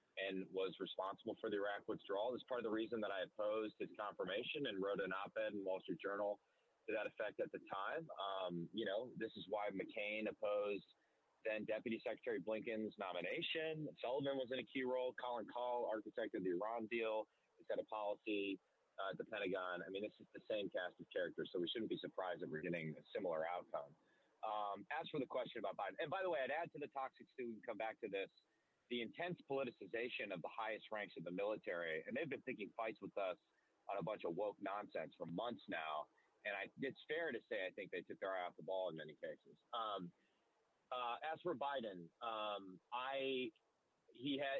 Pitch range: 100-135 Hz